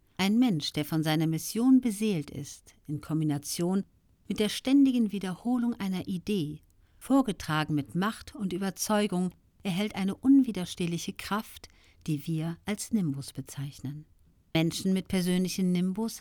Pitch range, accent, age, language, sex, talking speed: 145-215 Hz, German, 50-69, German, female, 125 wpm